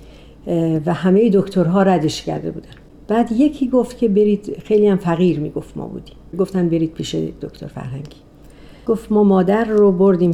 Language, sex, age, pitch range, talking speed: Persian, female, 50-69, 155-195 Hz, 150 wpm